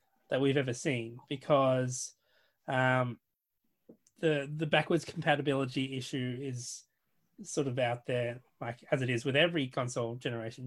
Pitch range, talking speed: 125-145 Hz, 135 wpm